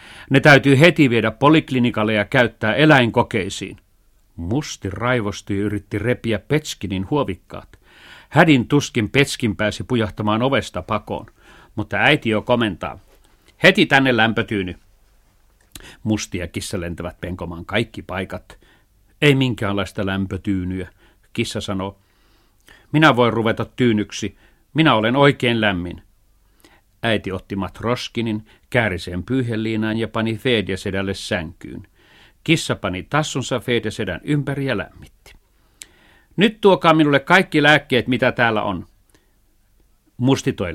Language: Finnish